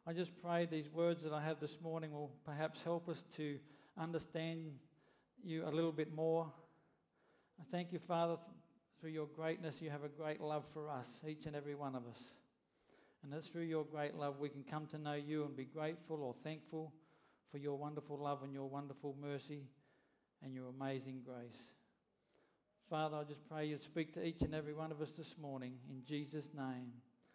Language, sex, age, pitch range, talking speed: English, male, 50-69, 150-185 Hz, 195 wpm